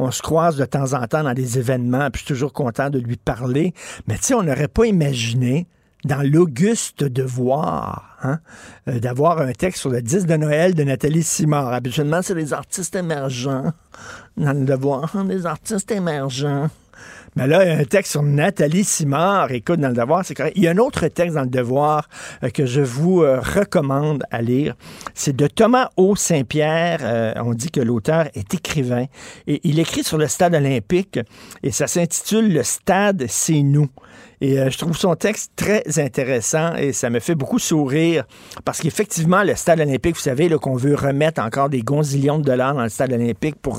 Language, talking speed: French, 200 wpm